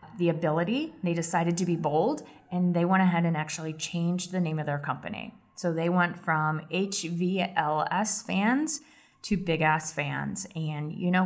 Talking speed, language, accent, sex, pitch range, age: 170 wpm, English, American, female, 155-195 Hz, 30-49